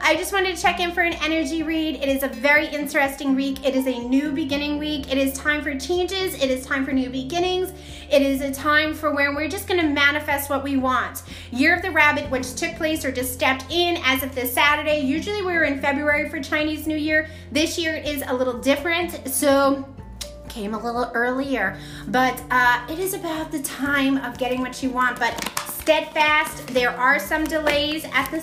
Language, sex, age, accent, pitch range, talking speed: English, female, 30-49, American, 265-315 Hz, 215 wpm